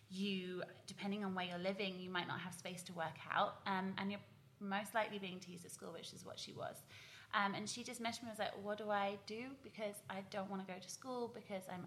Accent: British